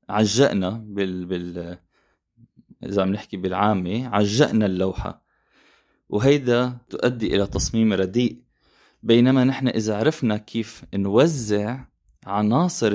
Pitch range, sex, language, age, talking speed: 100-130 Hz, male, Arabic, 20-39, 95 wpm